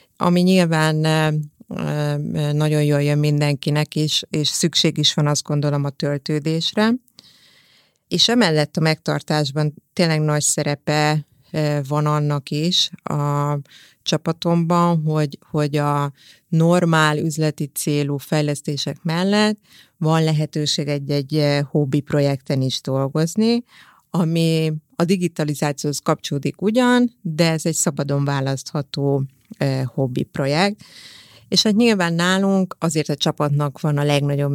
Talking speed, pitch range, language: 115 wpm, 145-170 Hz, Hungarian